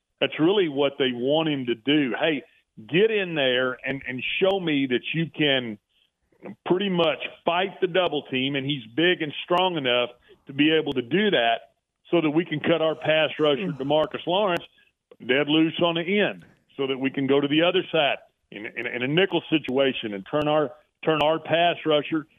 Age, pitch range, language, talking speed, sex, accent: 40-59, 135-160 Hz, English, 195 wpm, male, American